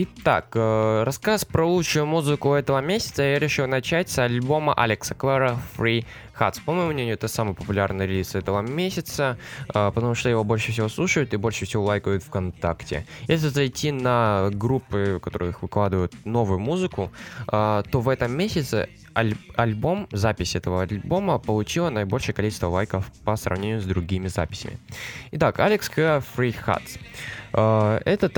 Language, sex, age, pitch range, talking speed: Russian, male, 20-39, 110-135 Hz, 145 wpm